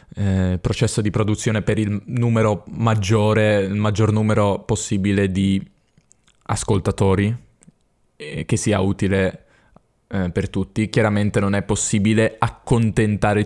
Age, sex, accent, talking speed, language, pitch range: 20-39, male, native, 115 wpm, Italian, 105-120 Hz